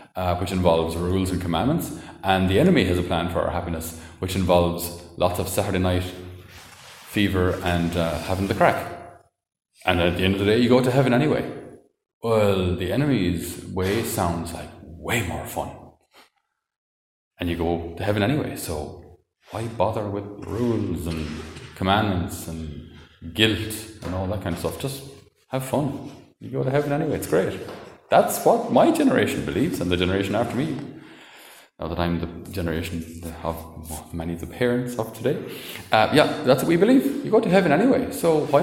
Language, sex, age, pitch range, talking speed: English, male, 30-49, 85-110 Hz, 180 wpm